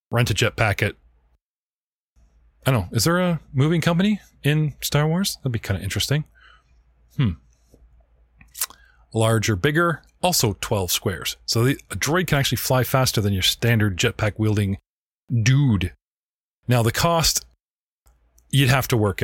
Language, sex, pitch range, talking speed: English, male, 100-140 Hz, 140 wpm